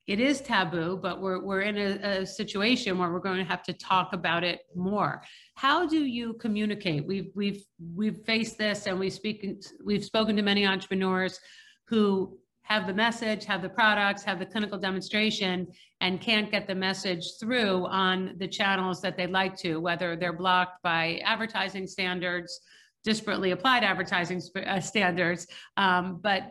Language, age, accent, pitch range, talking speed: English, 50-69, American, 180-210 Hz, 165 wpm